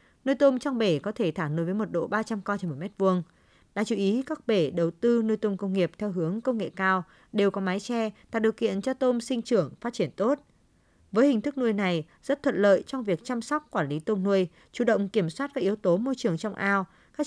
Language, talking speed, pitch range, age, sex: Vietnamese, 260 wpm, 185-235 Hz, 20-39, female